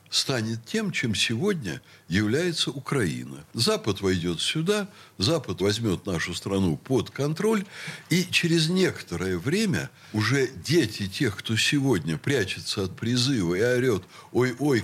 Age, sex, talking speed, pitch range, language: 60-79, male, 120 wpm, 110-175 Hz, Russian